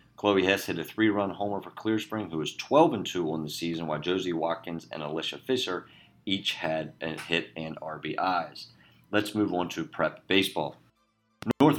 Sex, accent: male, American